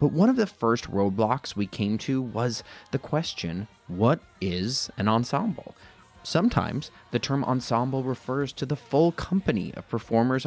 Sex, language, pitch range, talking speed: male, English, 105-140 Hz, 155 wpm